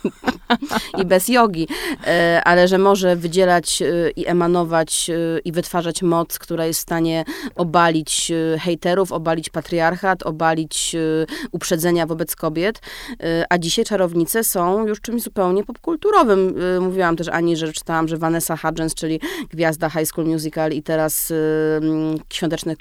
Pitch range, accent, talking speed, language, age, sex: 155-175 Hz, native, 125 wpm, Polish, 20-39, female